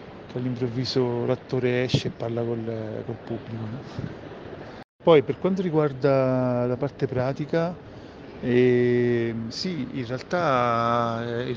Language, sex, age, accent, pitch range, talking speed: Italian, male, 40-59, native, 120-135 Hz, 110 wpm